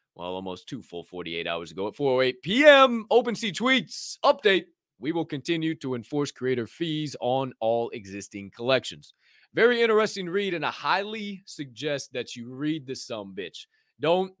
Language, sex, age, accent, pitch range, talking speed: English, male, 30-49, American, 130-195 Hz, 160 wpm